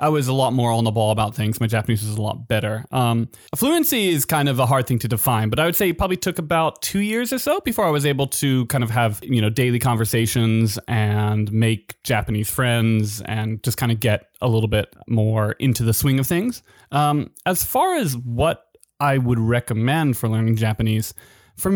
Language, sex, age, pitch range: English, male, 20-39, 115-155 Hz